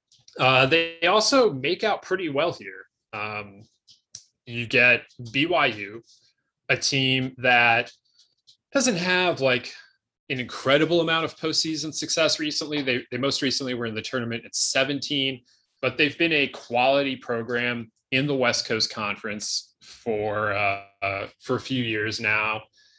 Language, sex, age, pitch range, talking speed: English, male, 20-39, 110-135 Hz, 140 wpm